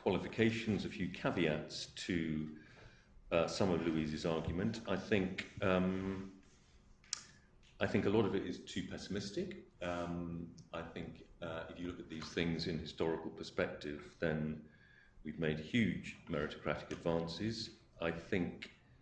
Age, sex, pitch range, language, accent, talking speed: 40-59, male, 80-95 Hz, English, British, 135 wpm